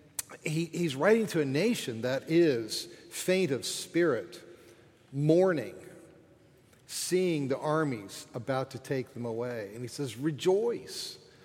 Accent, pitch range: American, 125-170 Hz